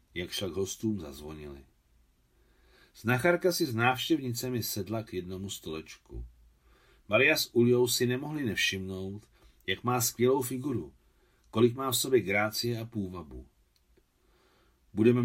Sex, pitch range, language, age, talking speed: male, 95-125 Hz, Czech, 40-59, 120 wpm